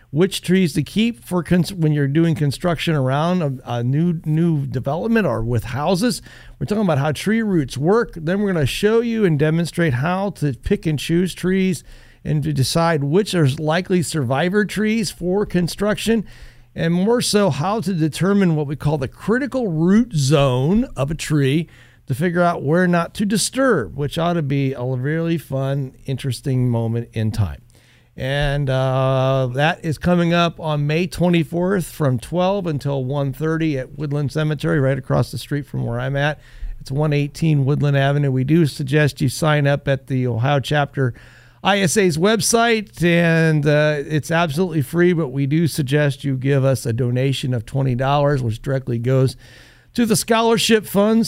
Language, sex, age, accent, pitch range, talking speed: English, male, 50-69, American, 135-175 Hz, 170 wpm